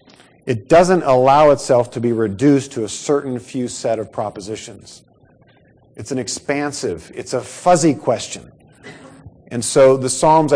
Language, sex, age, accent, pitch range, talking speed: English, male, 50-69, American, 105-135 Hz, 140 wpm